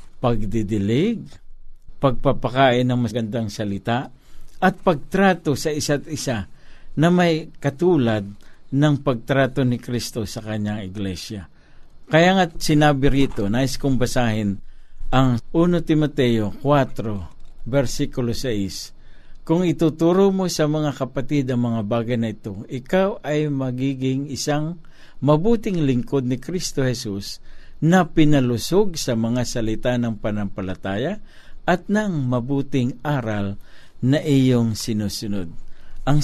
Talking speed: 110 wpm